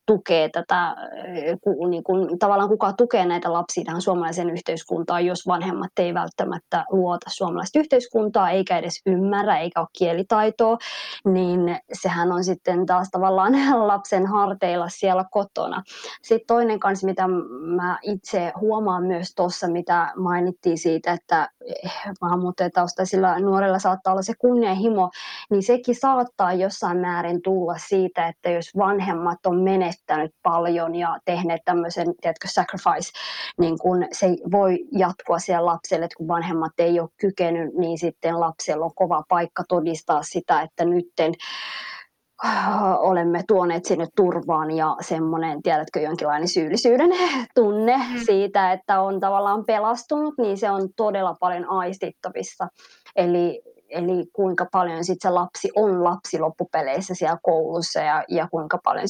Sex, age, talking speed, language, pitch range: female, 20-39, 135 wpm, Finnish, 170-200 Hz